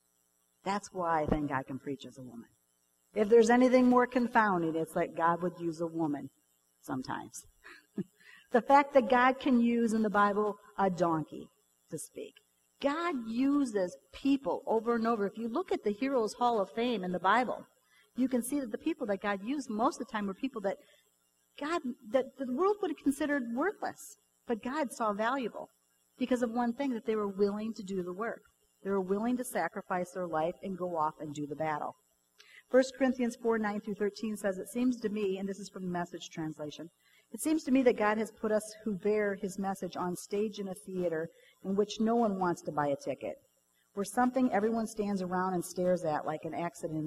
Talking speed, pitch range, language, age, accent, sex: 210 wpm, 165-235 Hz, English, 50-69, American, female